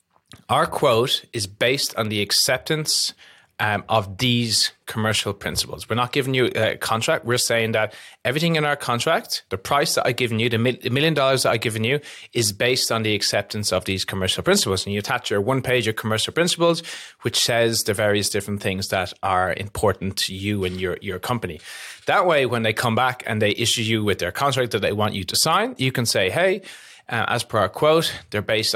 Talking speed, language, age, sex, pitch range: 215 wpm, English, 30-49, male, 100-125 Hz